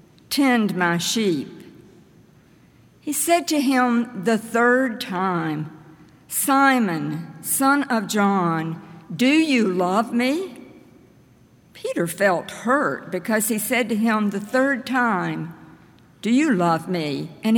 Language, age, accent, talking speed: English, 60-79, American, 115 wpm